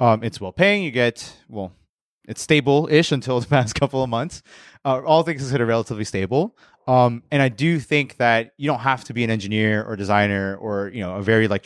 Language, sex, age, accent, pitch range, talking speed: English, male, 20-39, American, 105-140 Hz, 210 wpm